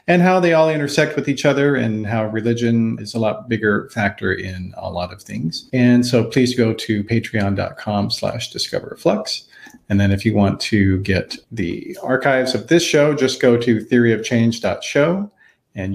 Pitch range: 110-140 Hz